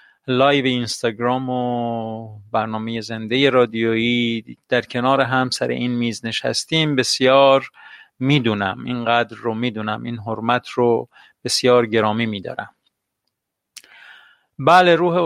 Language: Persian